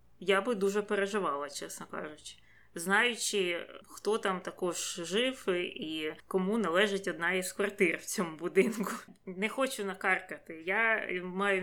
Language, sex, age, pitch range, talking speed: Ukrainian, female, 20-39, 175-205 Hz, 130 wpm